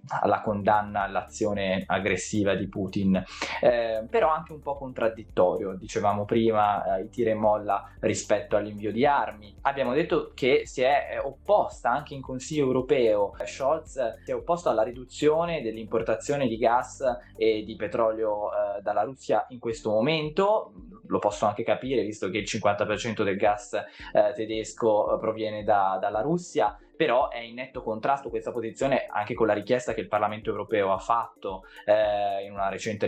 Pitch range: 100-120 Hz